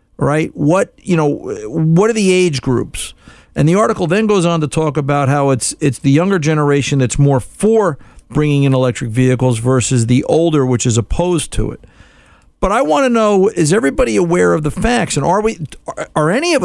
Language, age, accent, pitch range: English, 50-69, American, 130-185 Hz